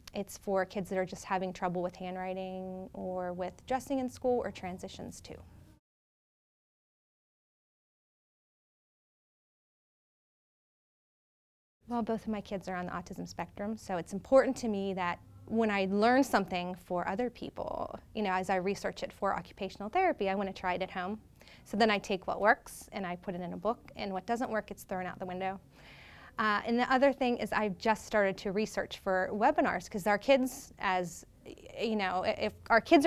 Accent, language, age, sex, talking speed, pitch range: American, English, 20-39, female, 185 wpm, 185-225 Hz